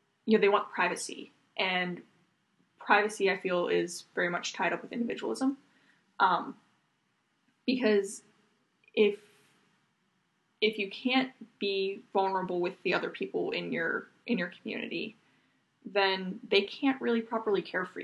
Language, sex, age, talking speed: English, female, 10-29, 130 wpm